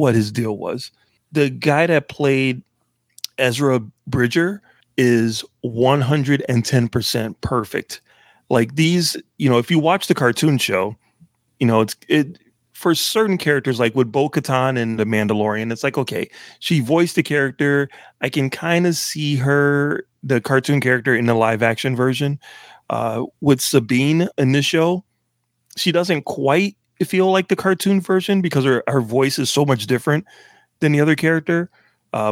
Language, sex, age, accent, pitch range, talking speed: English, male, 30-49, American, 120-155 Hz, 160 wpm